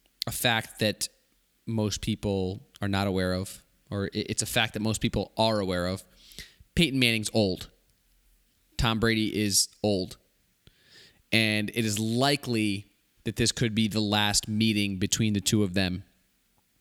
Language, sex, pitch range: English, male, 100-125 Hz